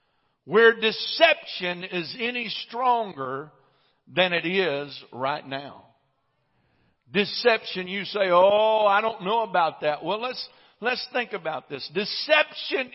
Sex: male